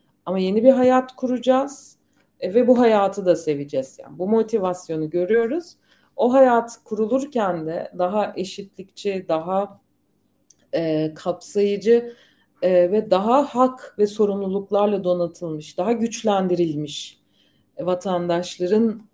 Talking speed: 105 wpm